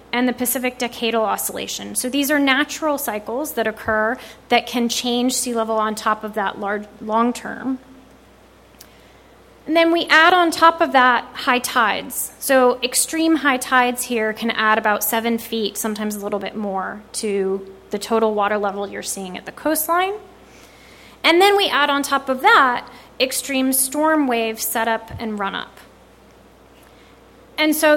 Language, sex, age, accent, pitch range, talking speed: English, female, 20-39, American, 220-275 Hz, 165 wpm